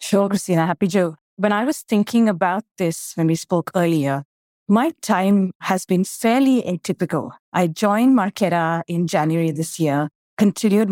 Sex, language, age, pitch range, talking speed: female, English, 30-49, 165-210 Hz, 155 wpm